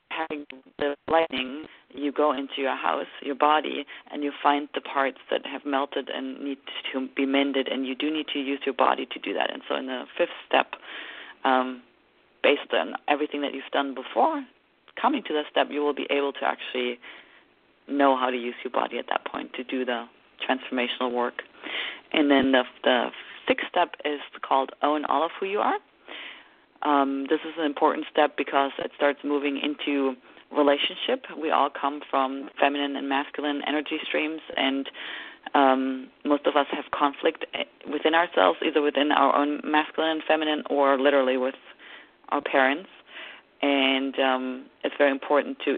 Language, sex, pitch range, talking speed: English, female, 135-150 Hz, 175 wpm